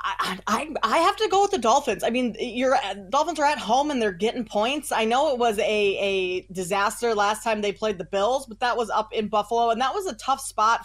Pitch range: 205-255 Hz